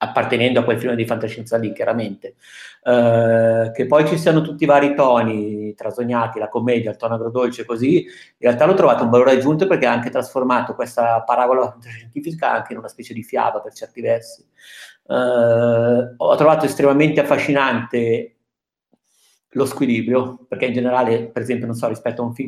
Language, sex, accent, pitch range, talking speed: Italian, male, native, 115-130 Hz, 175 wpm